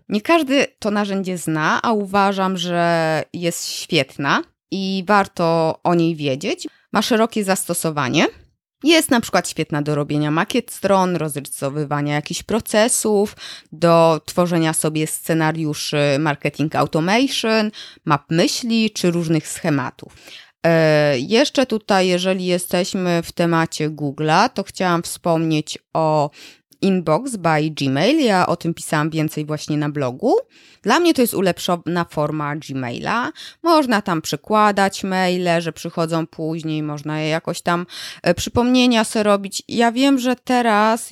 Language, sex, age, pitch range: Polish, female, 20-39, 155-215 Hz